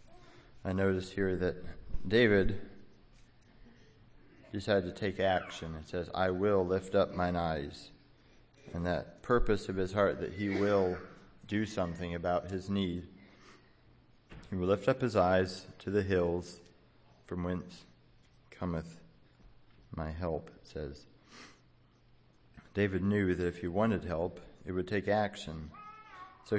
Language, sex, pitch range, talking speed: English, male, 90-100 Hz, 135 wpm